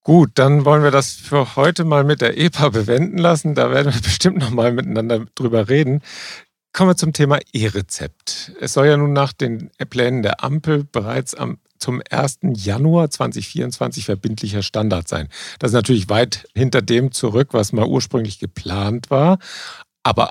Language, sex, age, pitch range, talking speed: German, male, 50-69, 105-135 Hz, 170 wpm